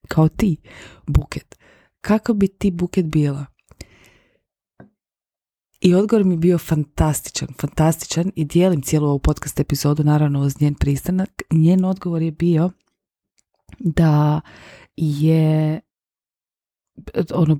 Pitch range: 140-170 Hz